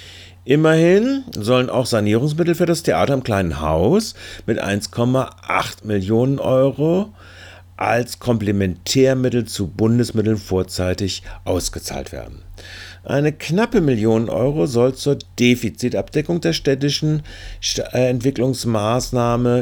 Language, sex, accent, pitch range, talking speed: German, male, German, 95-130 Hz, 95 wpm